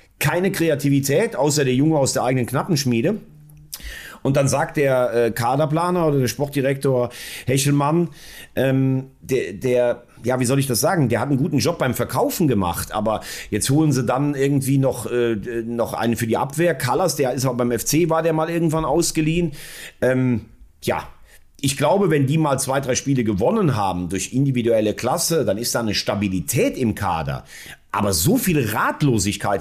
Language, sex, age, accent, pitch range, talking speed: German, male, 40-59, German, 115-150 Hz, 170 wpm